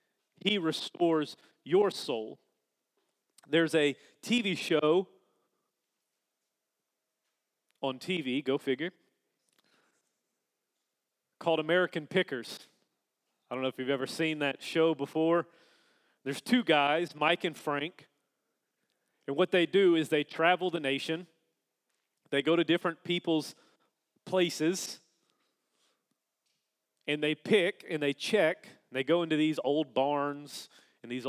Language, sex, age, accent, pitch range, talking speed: English, male, 30-49, American, 150-180 Hz, 115 wpm